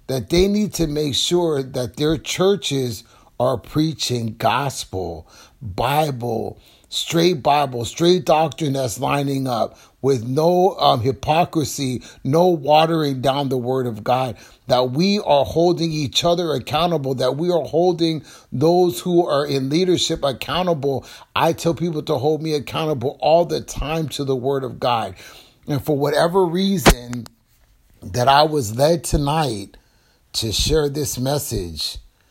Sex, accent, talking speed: male, American, 140 wpm